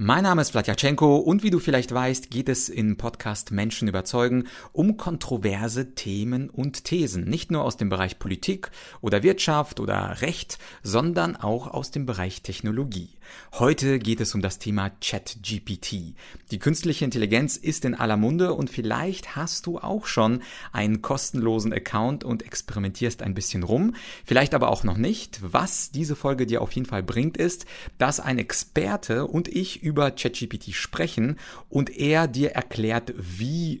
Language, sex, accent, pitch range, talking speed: German, male, German, 105-140 Hz, 165 wpm